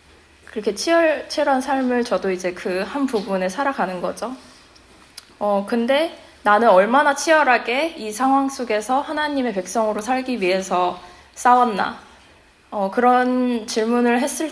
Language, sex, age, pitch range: Korean, female, 20-39, 200-250 Hz